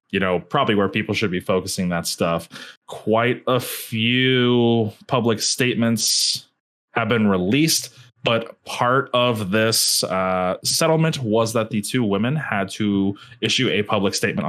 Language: English